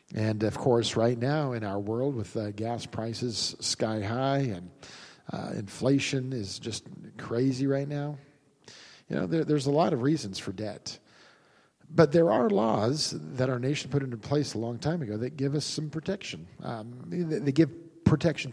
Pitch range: 110-150 Hz